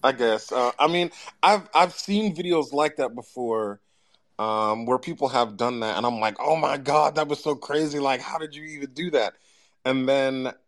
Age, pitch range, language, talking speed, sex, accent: 30-49, 105-140 Hz, English, 210 wpm, male, American